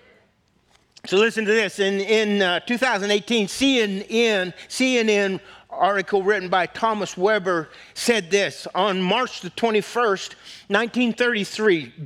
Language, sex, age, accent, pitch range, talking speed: English, male, 50-69, American, 190-230 Hz, 110 wpm